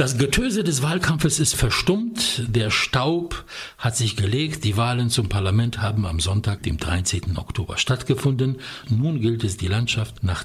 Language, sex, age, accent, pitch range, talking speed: English, male, 60-79, German, 95-125 Hz, 160 wpm